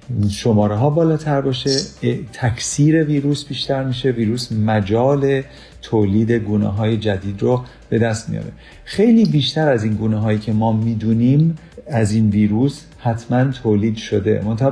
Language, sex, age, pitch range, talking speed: Persian, male, 40-59, 110-140 Hz, 140 wpm